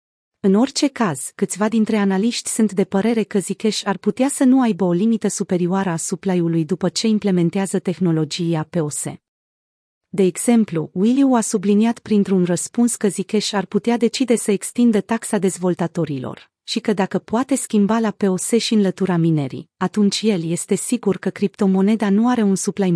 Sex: female